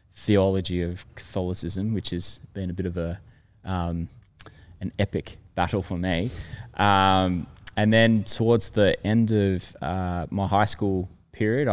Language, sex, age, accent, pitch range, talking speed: English, male, 20-39, Australian, 90-110 Hz, 145 wpm